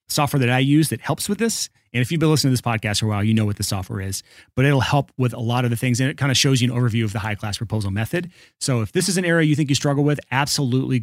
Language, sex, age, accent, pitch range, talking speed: English, male, 30-49, American, 115-155 Hz, 325 wpm